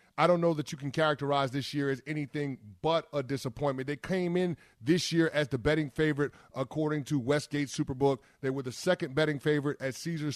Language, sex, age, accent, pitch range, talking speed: English, male, 30-49, American, 135-165 Hz, 205 wpm